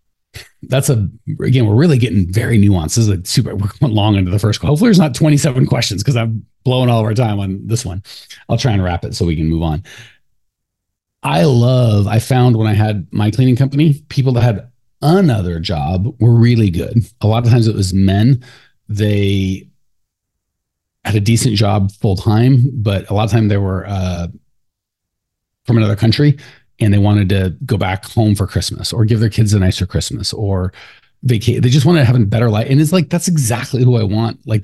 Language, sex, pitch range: English, male, 105-130 Hz